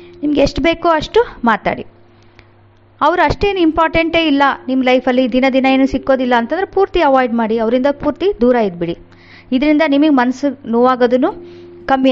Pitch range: 220-300 Hz